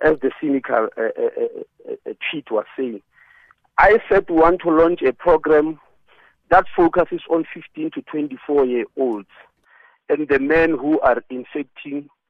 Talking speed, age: 140 wpm, 50-69